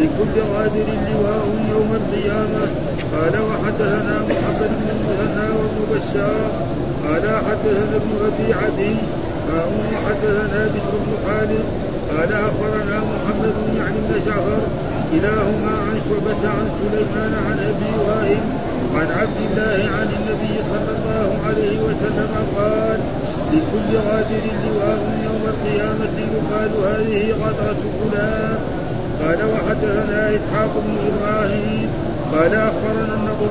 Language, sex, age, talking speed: Arabic, male, 50-69, 105 wpm